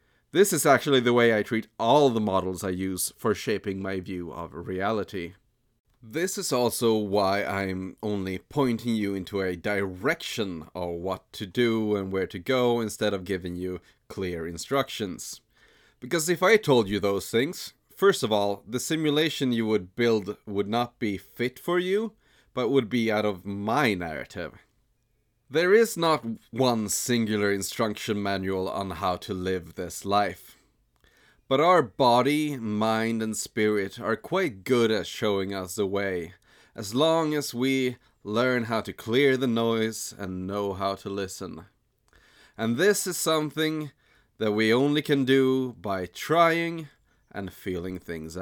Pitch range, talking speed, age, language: 95-125 Hz, 155 wpm, 30-49, English